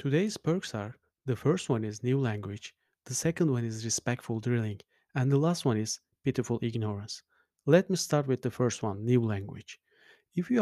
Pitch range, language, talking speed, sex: 115-135 Hz, English, 185 wpm, male